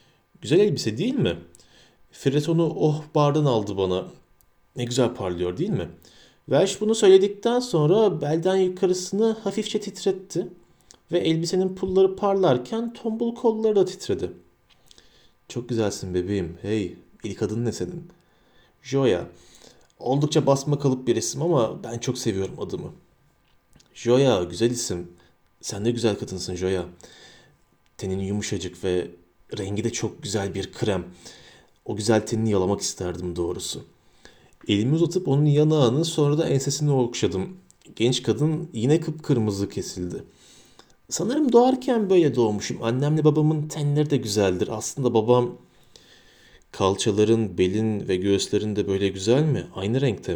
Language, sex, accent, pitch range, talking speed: Turkish, male, native, 100-155 Hz, 125 wpm